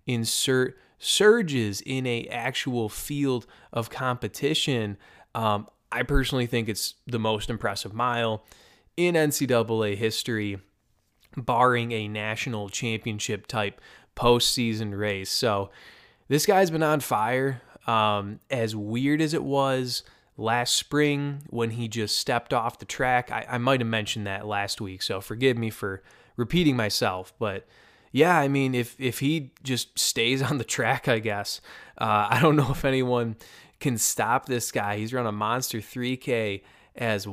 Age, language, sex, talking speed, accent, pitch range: 20-39, English, male, 145 wpm, American, 110-135 Hz